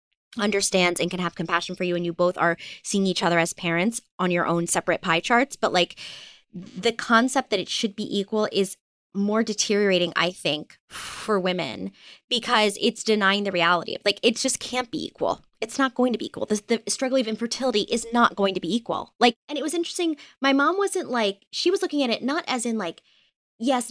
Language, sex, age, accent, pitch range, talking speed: English, female, 20-39, American, 185-245 Hz, 215 wpm